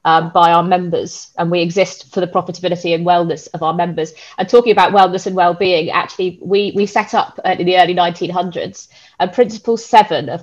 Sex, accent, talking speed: female, British, 195 wpm